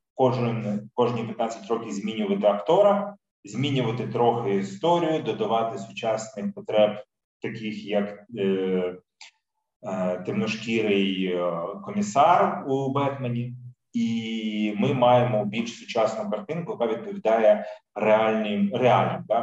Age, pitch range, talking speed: 30-49, 110-135 Hz, 90 wpm